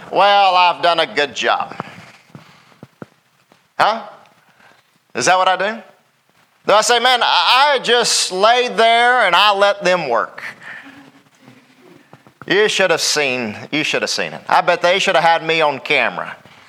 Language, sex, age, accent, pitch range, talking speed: English, male, 40-59, American, 190-260 Hz, 155 wpm